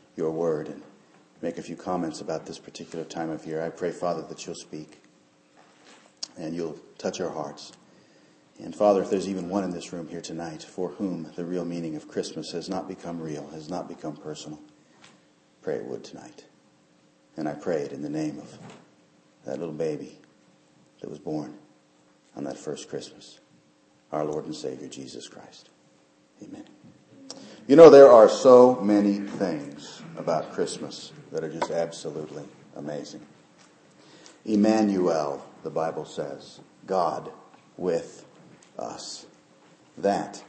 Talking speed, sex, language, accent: 150 wpm, male, English, American